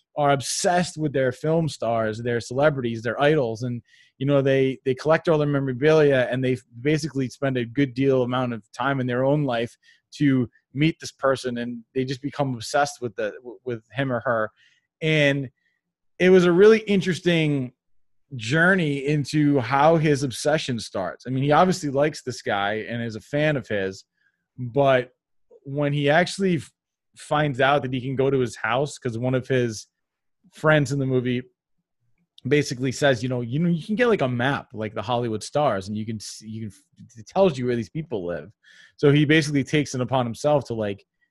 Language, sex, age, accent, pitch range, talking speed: English, male, 20-39, American, 120-145 Hz, 190 wpm